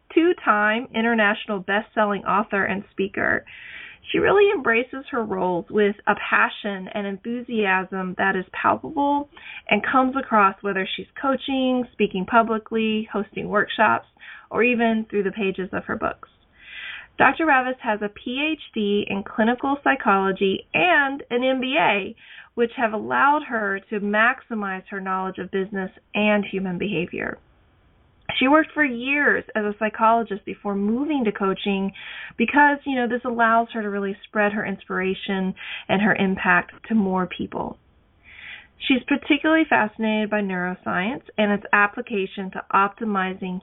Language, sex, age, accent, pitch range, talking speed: English, female, 30-49, American, 195-245 Hz, 135 wpm